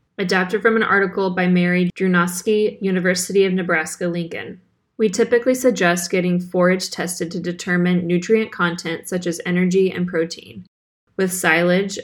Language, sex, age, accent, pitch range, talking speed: English, female, 20-39, American, 175-205 Hz, 135 wpm